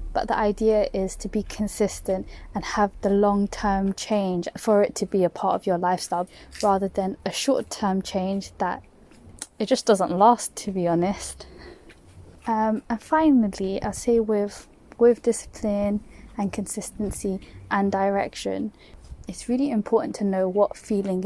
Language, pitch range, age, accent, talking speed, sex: English, 190-215 Hz, 20-39, British, 150 wpm, female